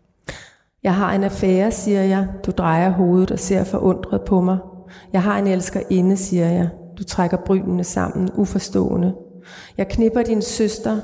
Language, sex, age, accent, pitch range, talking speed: Danish, female, 30-49, native, 185-210 Hz, 160 wpm